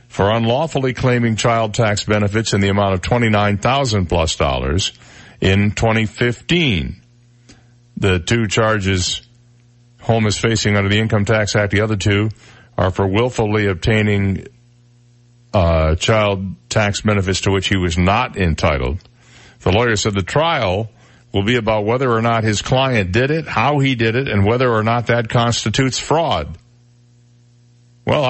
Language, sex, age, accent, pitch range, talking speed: English, male, 50-69, American, 100-120 Hz, 145 wpm